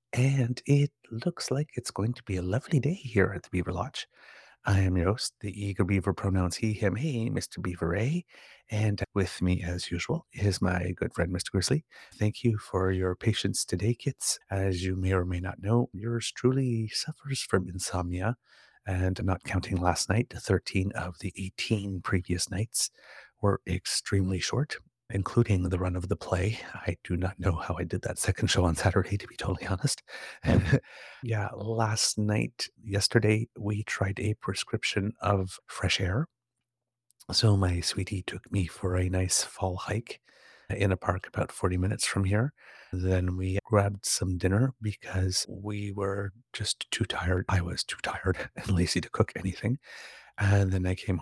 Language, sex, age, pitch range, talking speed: English, male, 30-49, 95-115 Hz, 175 wpm